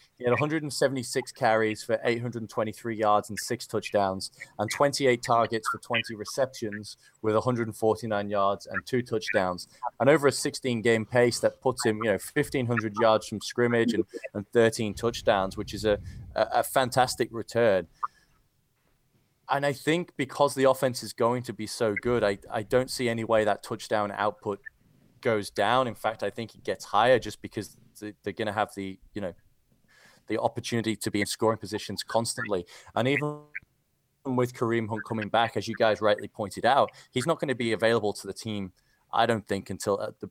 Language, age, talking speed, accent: English, 20-39, 180 wpm, British